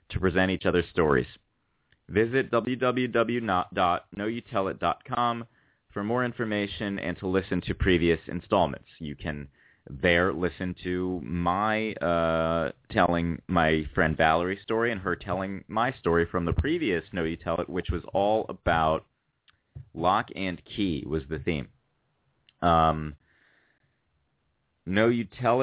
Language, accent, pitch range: English, American, 80-100 Hz